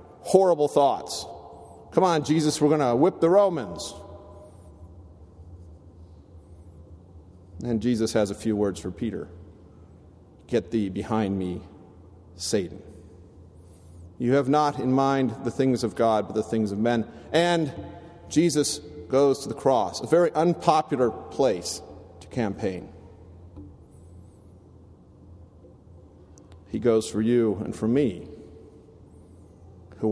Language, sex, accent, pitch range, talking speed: English, male, American, 85-120 Hz, 115 wpm